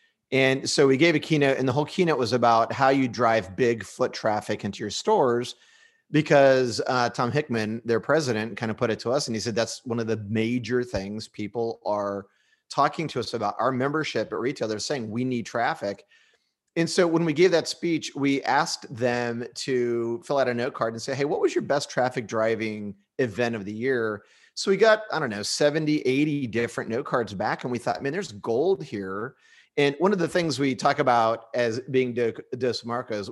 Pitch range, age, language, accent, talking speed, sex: 110-145 Hz, 30-49, English, American, 215 wpm, male